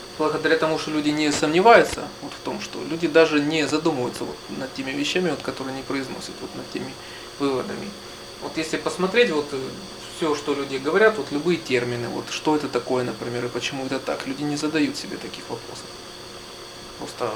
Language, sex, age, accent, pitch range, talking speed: Russian, male, 20-39, native, 135-160 Hz, 185 wpm